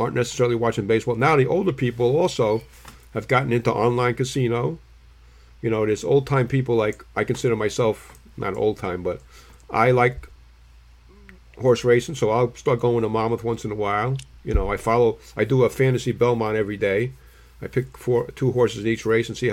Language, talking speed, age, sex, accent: English, 195 wpm, 50-69, male, American